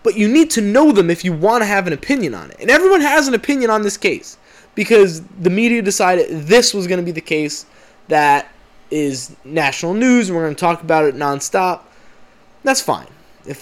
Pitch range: 165-225 Hz